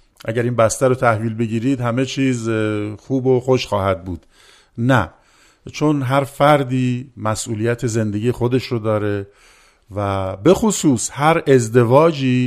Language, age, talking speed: Persian, 50-69, 130 wpm